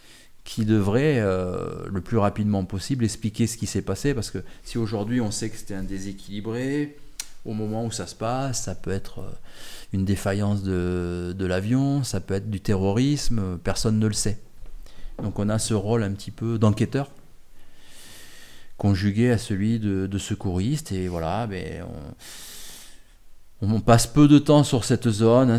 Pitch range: 95-115 Hz